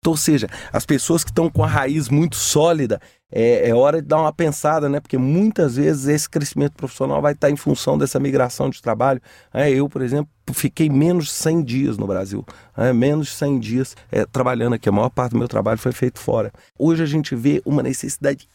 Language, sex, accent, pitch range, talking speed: English, male, Brazilian, 130-155 Hz, 205 wpm